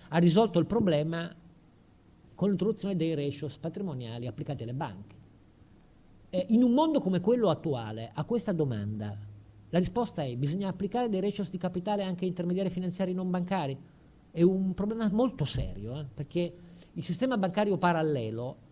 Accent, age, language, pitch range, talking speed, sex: native, 50-69, Italian, 135-185 Hz, 150 wpm, male